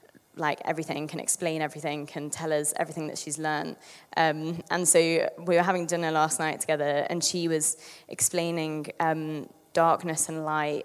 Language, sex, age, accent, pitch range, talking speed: English, female, 20-39, British, 155-180 Hz, 165 wpm